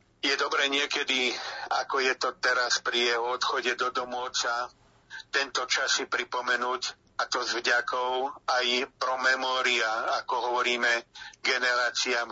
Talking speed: 125 wpm